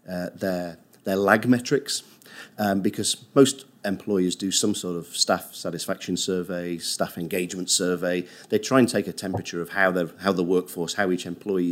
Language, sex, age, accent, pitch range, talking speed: English, male, 40-59, British, 90-105 Hz, 170 wpm